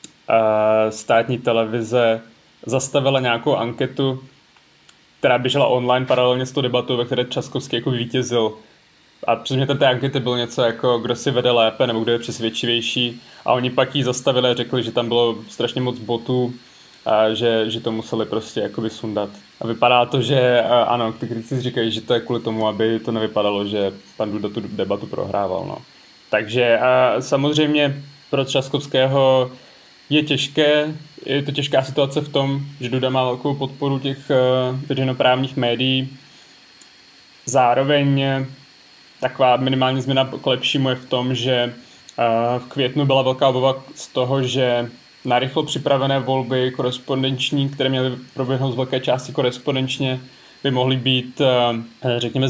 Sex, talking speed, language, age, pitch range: male, 150 wpm, Czech, 20-39, 120-135 Hz